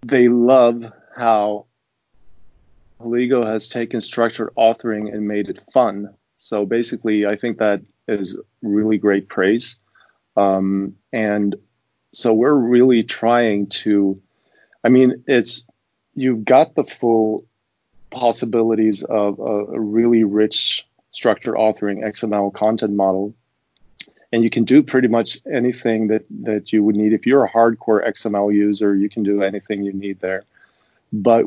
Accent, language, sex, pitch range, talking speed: American, English, male, 100-115 Hz, 135 wpm